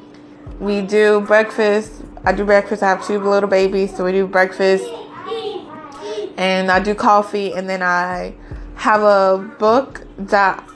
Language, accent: English, American